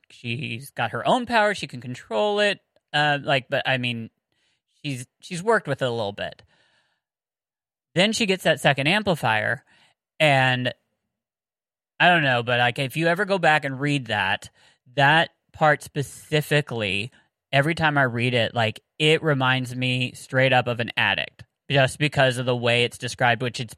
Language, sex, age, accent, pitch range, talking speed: English, male, 30-49, American, 120-150 Hz, 170 wpm